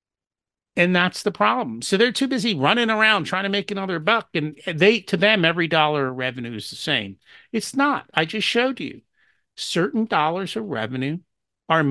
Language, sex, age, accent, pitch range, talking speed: English, male, 50-69, American, 165-235 Hz, 185 wpm